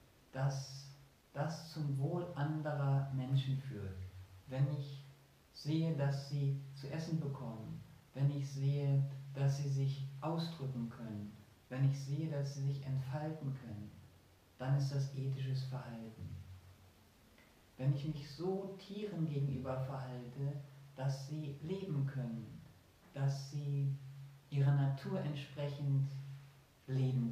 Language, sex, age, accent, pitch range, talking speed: German, male, 40-59, German, 125-145 Hz, 115 wpm